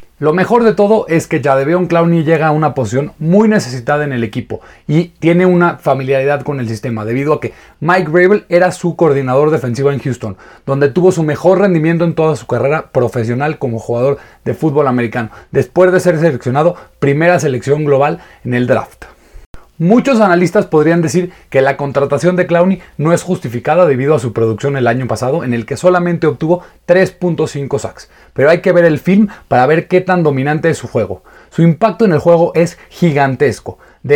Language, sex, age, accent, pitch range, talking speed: Spanish, male, 30-49, Mexican, 130-175 Hz, 190 wpm